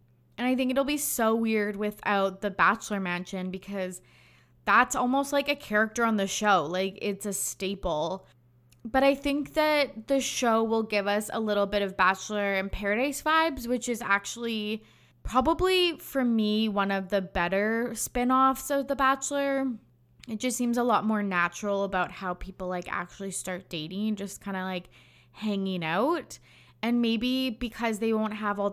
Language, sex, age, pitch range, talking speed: English, female, 20-39, 190-235 Hz, 170 wpm